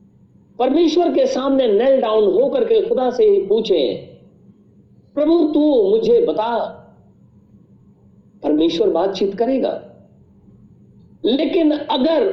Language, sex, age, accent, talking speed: Hindi, male, 50-69, native, 95 wpm